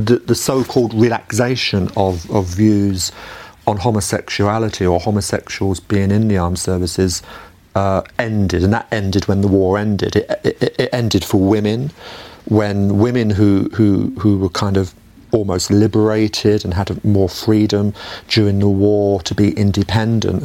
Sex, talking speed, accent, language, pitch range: male, 150 wpm, British, English, 95-110 Hz